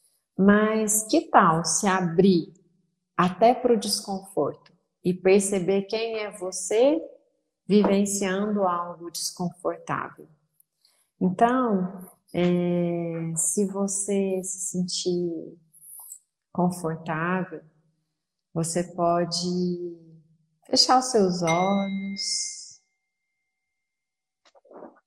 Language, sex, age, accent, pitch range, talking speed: Portuguese, female, 40-59, Brazilian, 170-205 Hz, 70 wpm